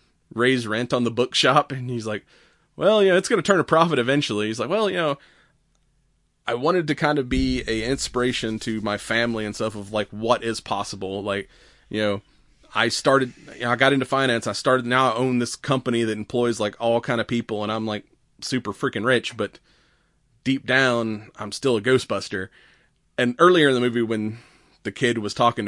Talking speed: 205 wpm